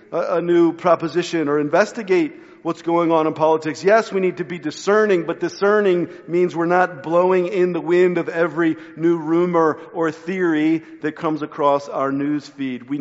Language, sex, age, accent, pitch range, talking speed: English, male, 50-69, American, 160-195 Hz, 175 wpm